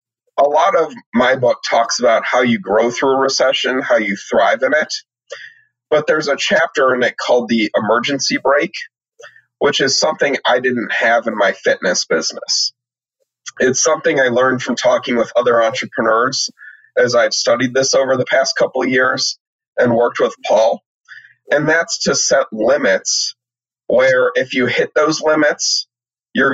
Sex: male